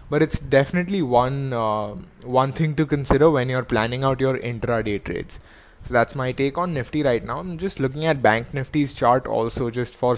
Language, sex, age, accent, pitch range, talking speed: English, male, 20-39, Indian, 115-140 Hz, 200 wpm